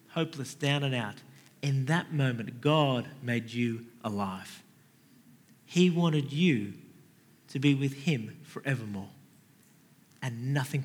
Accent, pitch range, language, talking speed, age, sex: Australian, 115-145 Hz, English, 115 wpm, 40-59, male